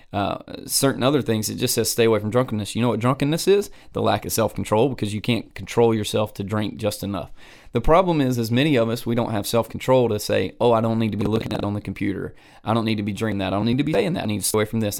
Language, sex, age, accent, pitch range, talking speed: English, male, 30-49, American, 100-125 Hz, 300 wpm